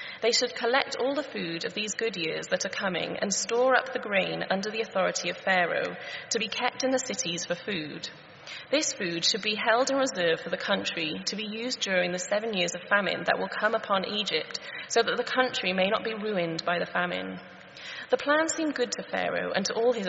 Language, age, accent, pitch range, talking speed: English, 30-49, British, 185-255 Hz, 225 wpm